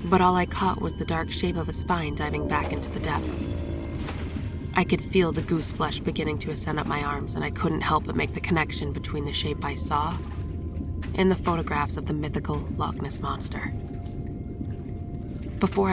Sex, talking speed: female, 190 wpm